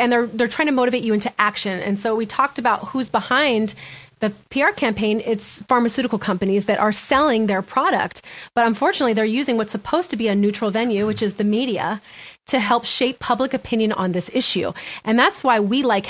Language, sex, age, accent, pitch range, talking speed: English, female, 30-49, American, 205-245 Hz, 205 wpm